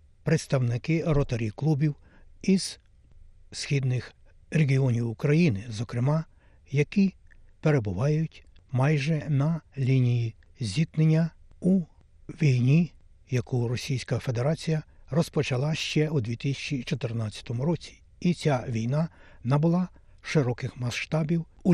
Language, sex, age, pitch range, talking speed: Ukrainian, male, 60-79, 115-160 Hz, 85 wpm